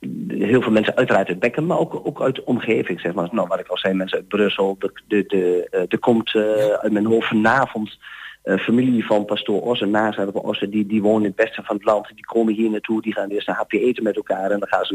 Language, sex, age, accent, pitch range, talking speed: Dutch, male, 40-59, Dutch, 100-115 Hz, 265 wpm